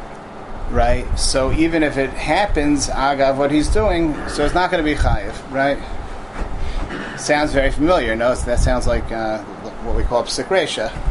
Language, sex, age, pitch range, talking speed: English, male, 30-49, 110-140 Hz, 180 wpm